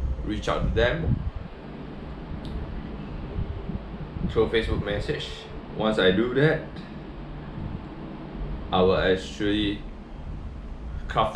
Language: English